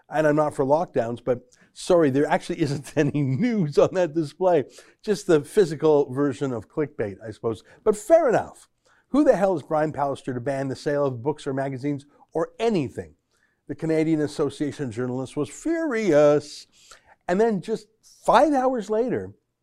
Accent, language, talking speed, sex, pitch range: American, English, 170 wpm, male, 140-195 Hz